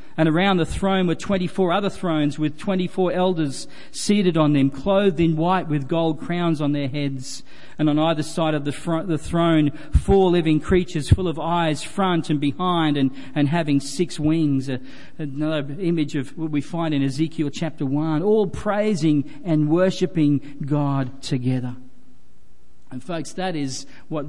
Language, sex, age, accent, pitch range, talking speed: English, male, 40-59, Australian, 135-165 Hz, 160 wpm